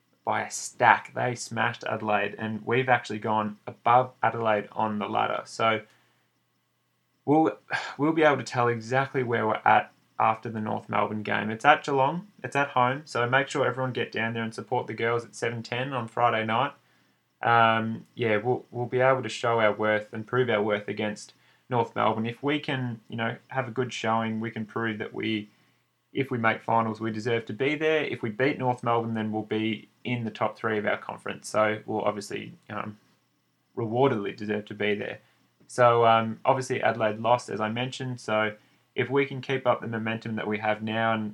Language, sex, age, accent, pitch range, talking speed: English, male, 20-39, Australian, 110-125 Hz, 200 wpm